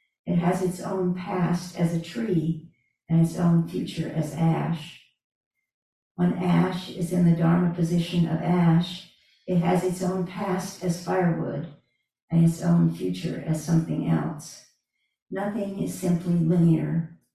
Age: 60-79